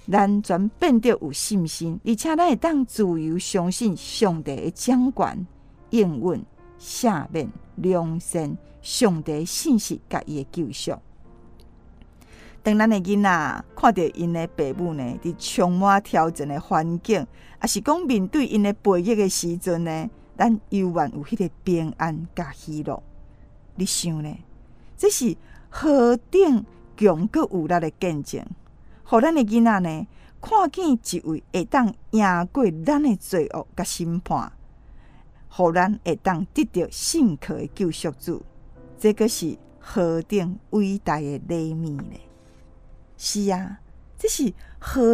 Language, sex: Chinese, female